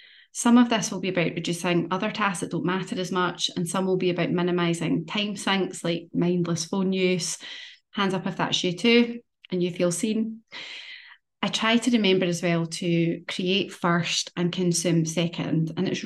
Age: 30-49